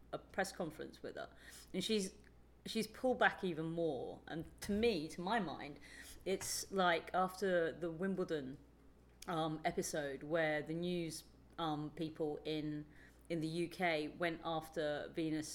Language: English